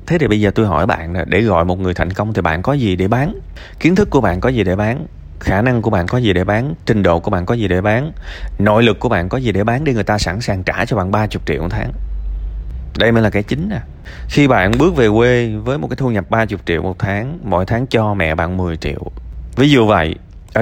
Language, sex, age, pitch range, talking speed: Vietnamese, male, 20-39, 85-110 Hz, 275 wpm